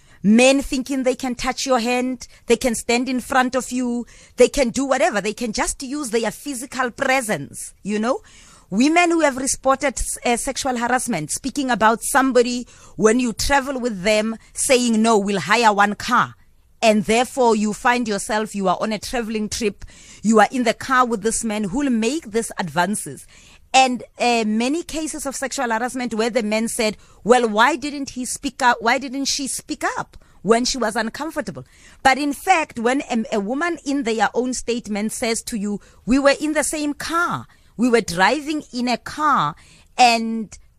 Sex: female